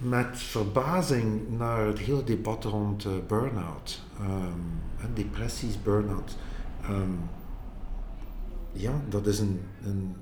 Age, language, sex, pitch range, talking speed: 50-69, Dutch, male, 100-130 Hz, 95 wpm